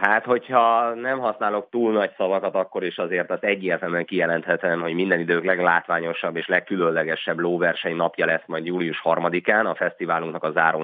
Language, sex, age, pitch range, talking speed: Hungarian, male, 30-49, 85-105 Hz, 160 wpm